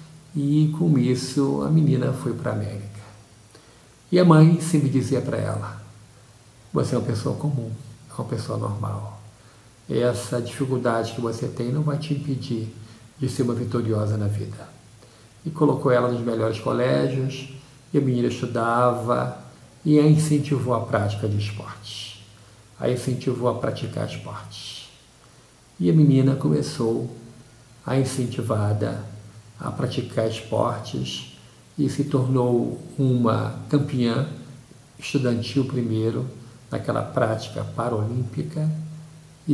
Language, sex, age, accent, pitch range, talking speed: Portuguese, male, 50-69, Brazilian, 110-135 Hz, 125 wpm